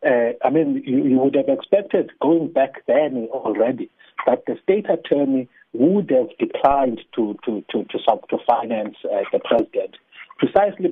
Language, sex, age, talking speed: English, male, 60-79, 165 wpm